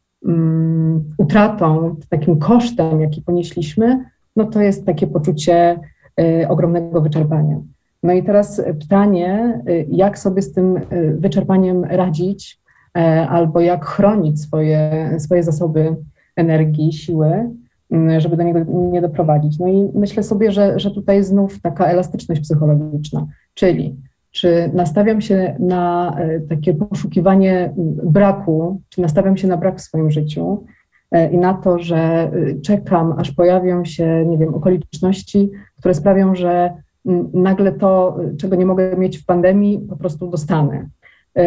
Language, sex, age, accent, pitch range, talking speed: Polish, female, 30-49, native, 160-195 Hz, 125 wpm